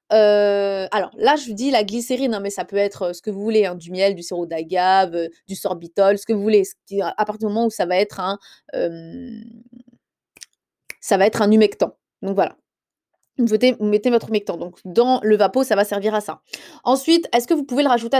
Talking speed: 230 wpm